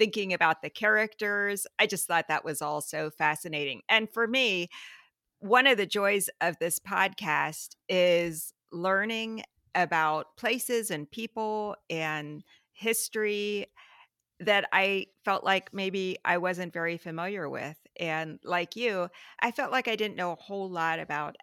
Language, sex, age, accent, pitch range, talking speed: English, female, 40-59, American, 160-205 Hz, 150 wpm